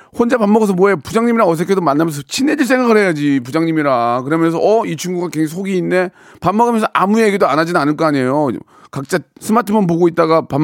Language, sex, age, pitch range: Korean, male, 40-59, 140-195 Hz